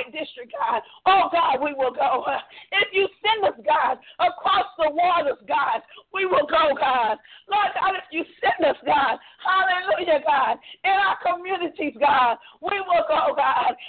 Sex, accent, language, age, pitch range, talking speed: female, American, English, 50-69, 285-370 Hz, 160 wpm